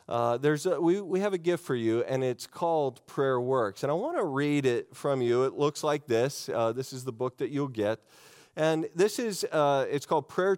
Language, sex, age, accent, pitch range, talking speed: English, male, 40-59, American, 120-160 Hz, 240 wpm